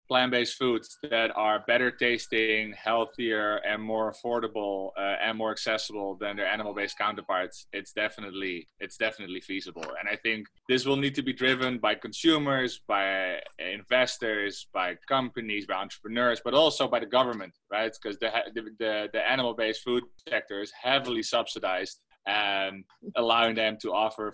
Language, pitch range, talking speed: English, 105-120 Hz, 150 wpm